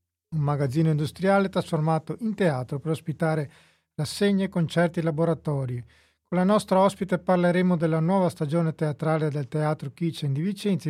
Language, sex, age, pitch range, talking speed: Italian, male, 40-59, 145-175 Hz, 145 wpm